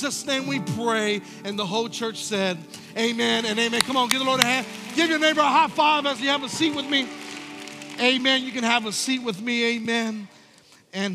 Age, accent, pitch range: 40-59, American, 185-235 Hz